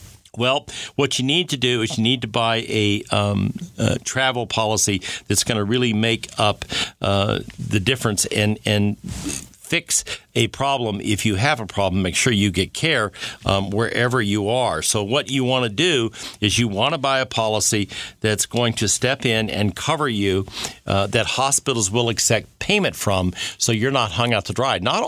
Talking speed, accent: 195 wpm, American